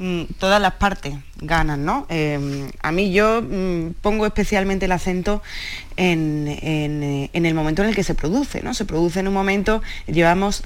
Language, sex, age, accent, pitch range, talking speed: Spanish, female, 20-39, Spanish, 165-195 Hz, 175 wpm